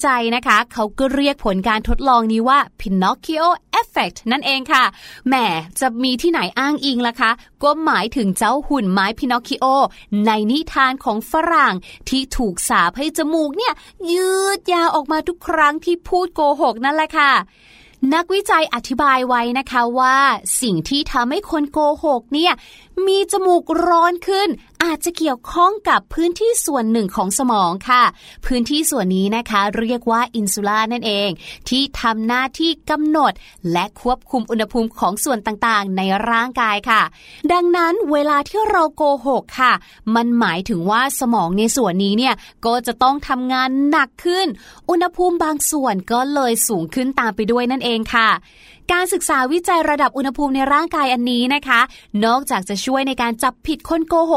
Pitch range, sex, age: 230-315 Hz, female, 20-39